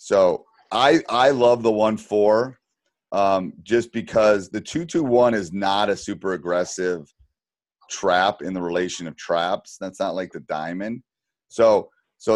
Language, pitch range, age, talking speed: English, 95-115 Hz, 30-49, 150 wpm